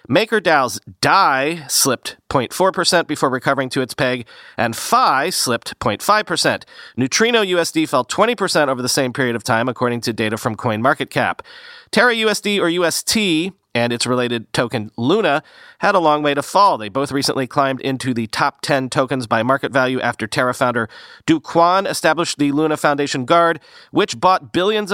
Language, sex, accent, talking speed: English, male, American, 160 wpm